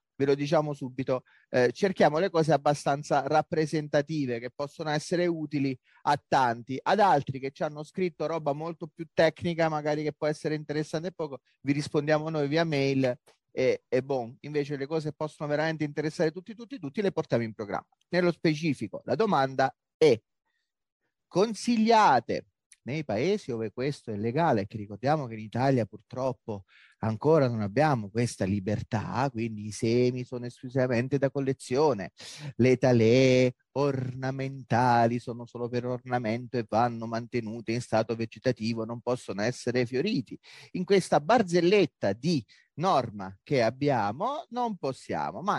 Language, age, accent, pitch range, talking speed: Italian, 30-49, native, 120-165 Hz, 145 wpm